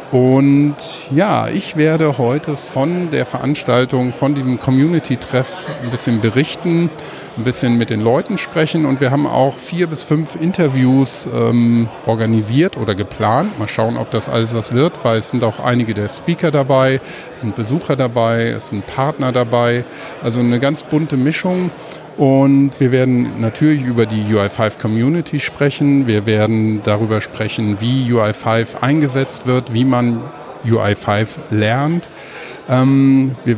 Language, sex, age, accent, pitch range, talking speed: German, male, 50-69, German, 115-150 Hz, 145 wpm